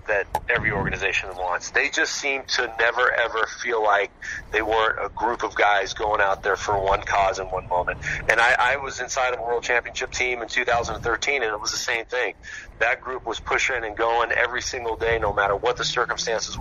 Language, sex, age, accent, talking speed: English, male, 40-59, American, 210 wpm